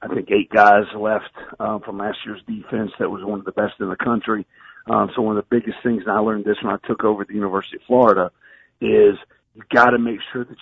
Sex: male